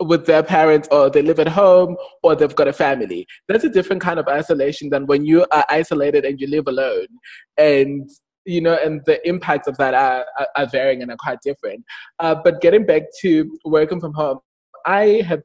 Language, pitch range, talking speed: English, 145-185 Hz, 205 wpm